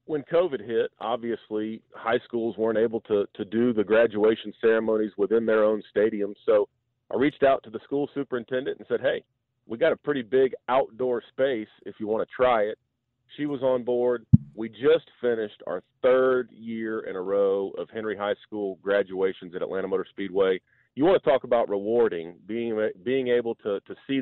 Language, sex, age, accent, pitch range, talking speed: English, male, 40-59, American, 115-135 Hz, 190 wpm